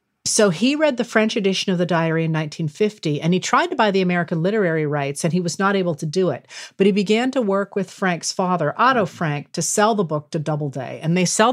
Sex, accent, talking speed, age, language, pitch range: female, American, 245 wpm, 40-59, English, 165-235 Hz